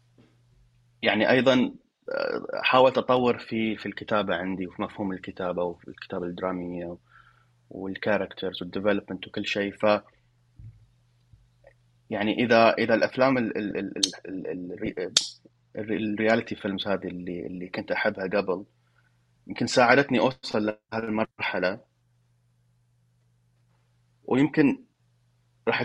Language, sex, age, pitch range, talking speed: Arabic, male, 30-49, 95-120 Hz, 100 wpm